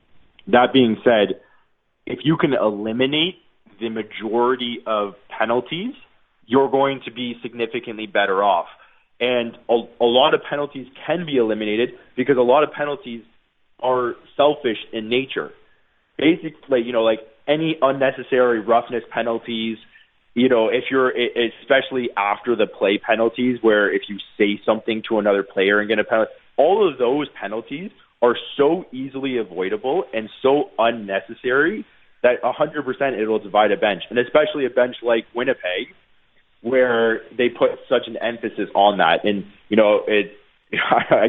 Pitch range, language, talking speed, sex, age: 110-135 Hz, English, 150 wpm, male, 20-39